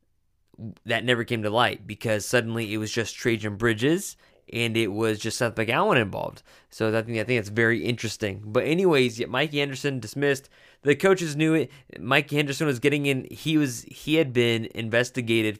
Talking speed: 185 wpm